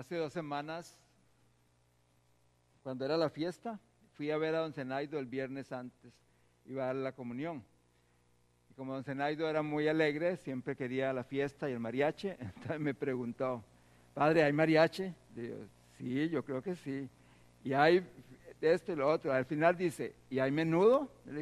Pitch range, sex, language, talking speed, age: 110-160 Hz, male, English, 170 wpm, 60-79